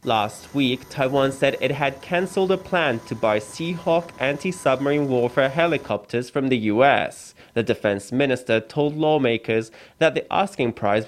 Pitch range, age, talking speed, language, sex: 115-160 Hz, 20-39, 145 wpm, English, male